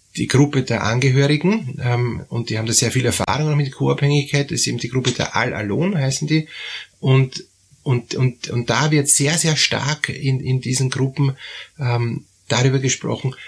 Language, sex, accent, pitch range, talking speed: German, male, Austrian, 115-145 Hz, 175 wpm